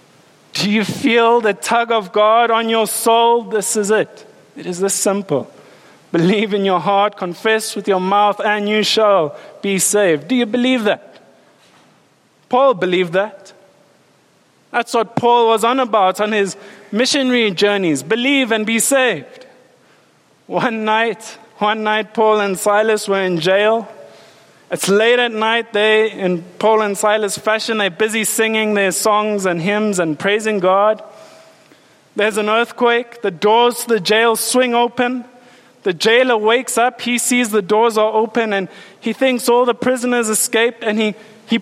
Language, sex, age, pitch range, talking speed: English, male, 20-39, 205-240 Hz, 160 wpm